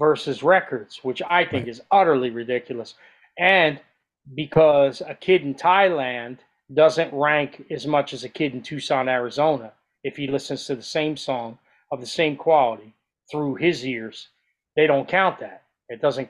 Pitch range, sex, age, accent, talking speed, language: 125-155 Hz, male, 30-49, American, 160 wpm, English